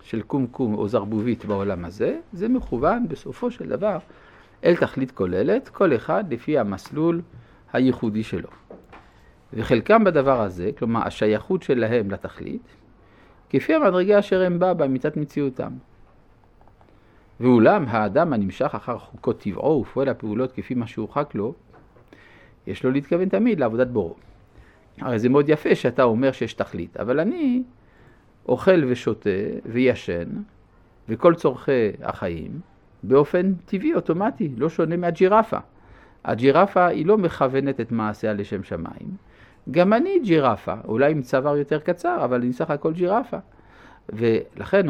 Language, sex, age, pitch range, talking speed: Hebrew, male, 50-69, 110-175 Hz, 130 wpm